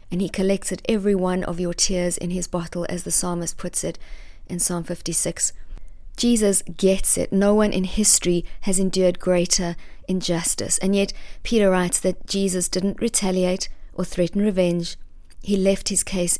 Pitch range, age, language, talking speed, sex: 170-195 Hz, 40-59, English, 165 wpm, female